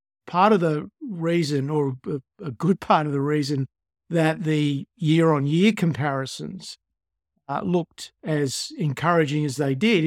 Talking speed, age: 130 wpm, 50-69